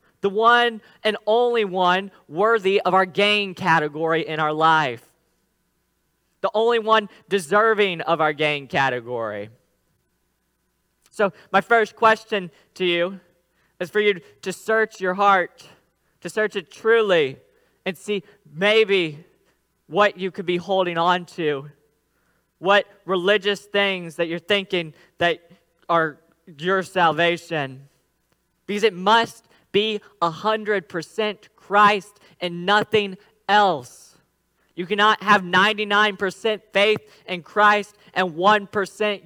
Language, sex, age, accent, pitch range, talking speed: English, male, 10-29, American, 170-210 Hz, 115 wpm